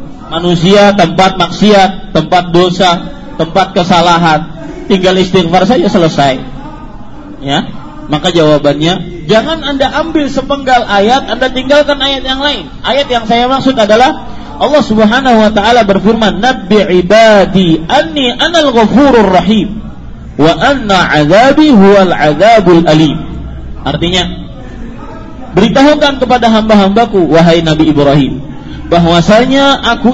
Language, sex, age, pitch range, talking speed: Malay, male, 40-59, 170-265 Hz, 110 wpm